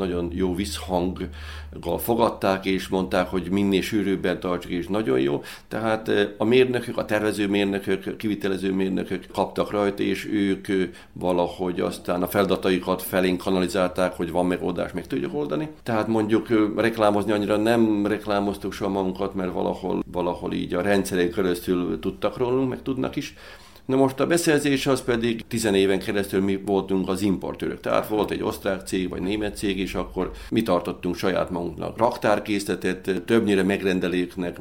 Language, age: Hungarian, 50-69